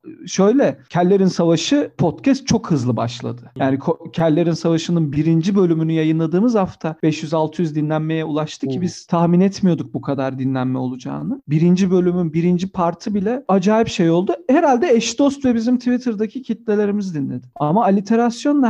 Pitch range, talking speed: 150-205 Hz, 140 wpm